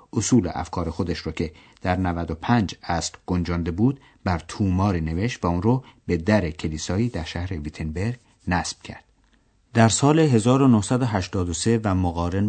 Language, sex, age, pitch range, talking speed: Persian, male, 50-69, 85-115 Hz, 140 wpm